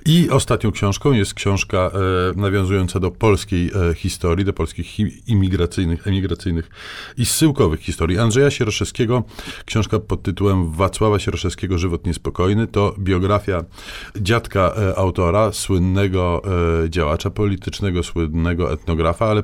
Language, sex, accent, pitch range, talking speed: Polish, male, native, 85-105 Hz, 125 wpm